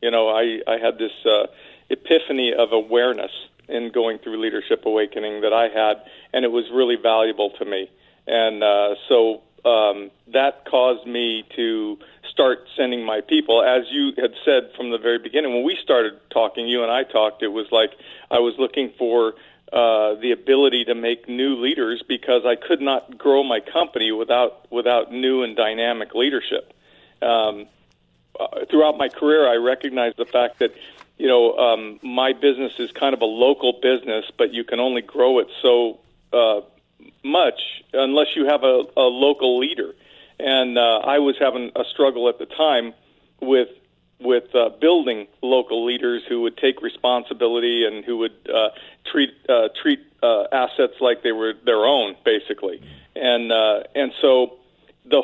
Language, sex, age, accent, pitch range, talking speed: English, male, 50-69, American, 115-140 Hz, 170 wpm